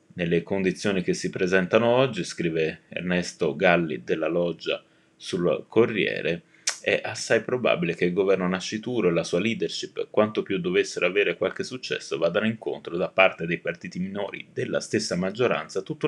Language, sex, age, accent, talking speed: Italian, male, 30-49, native, 155 wpm